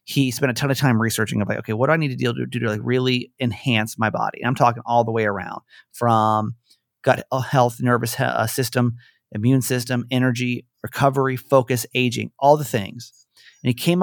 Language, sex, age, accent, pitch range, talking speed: English, male, 30-49, American, 120-155 Hz, 200 wpm